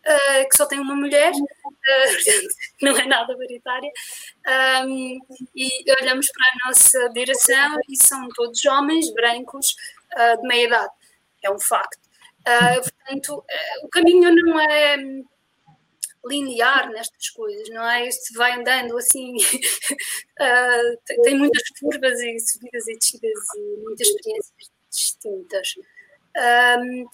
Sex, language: female, Portuguese